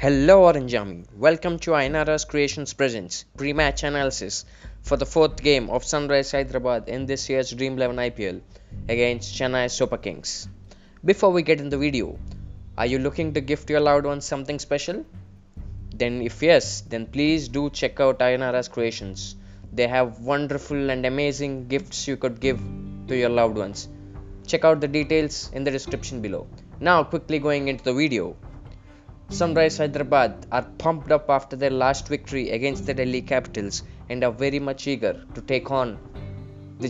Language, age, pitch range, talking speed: Telugu, 20-39, 110-145 Hz, 170 wpm